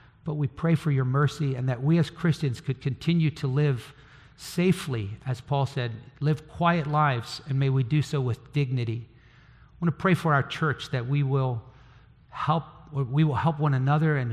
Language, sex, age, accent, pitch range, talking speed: English, male, 50-69, American, 135-165 Hz, 185 wpm